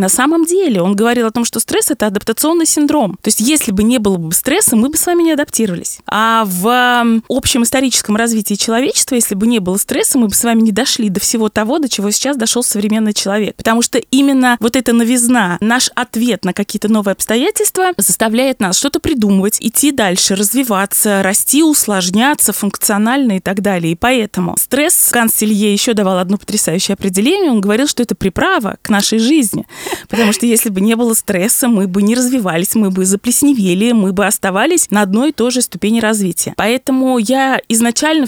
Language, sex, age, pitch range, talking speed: Russian, female, 20-39, 200-250 Hz, 190 wpm